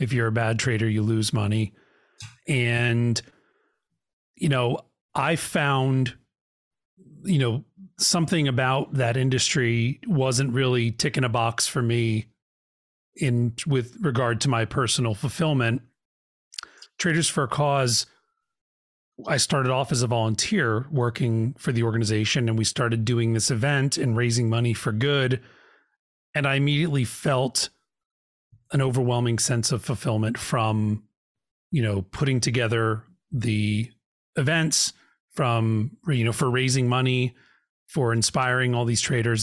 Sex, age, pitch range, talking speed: male, 40-59, 115-140 Hz, 130 wpm